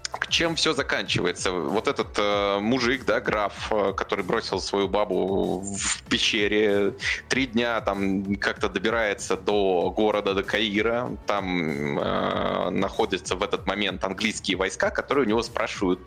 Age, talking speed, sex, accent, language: 20-39, 140 wpm, male, native, Russian